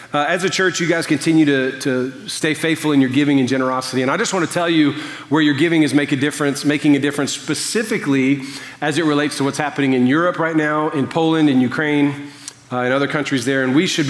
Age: 40-59